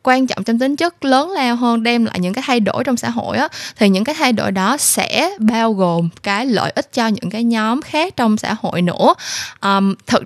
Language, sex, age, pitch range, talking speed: Vietnamese, female, 10-29, 190-250 Hz, 240 wpm